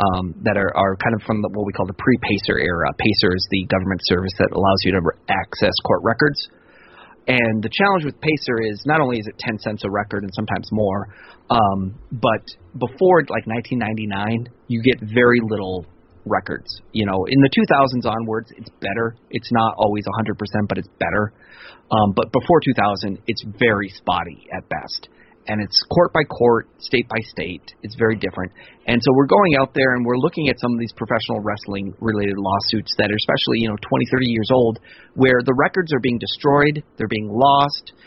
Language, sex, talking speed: English, male, 190 wpm